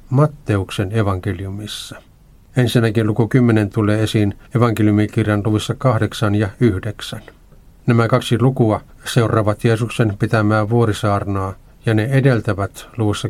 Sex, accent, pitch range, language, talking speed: male, native, 105-120 Hz, Finnish, 105 wpm